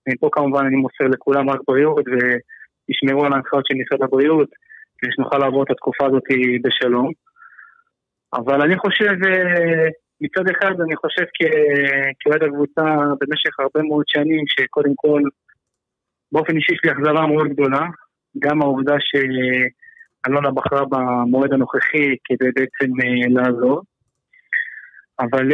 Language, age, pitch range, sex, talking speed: Hebrew, 30-49, 135-155 Hz, male, 120 wpm